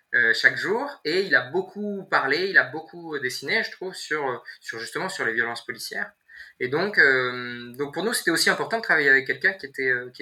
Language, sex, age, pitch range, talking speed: French, male, 20-39, 120-195 Hz, 210 wpm